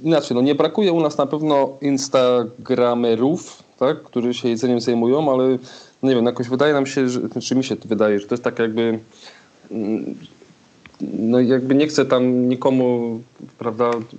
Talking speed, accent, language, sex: 165 wpm, native, Polish, male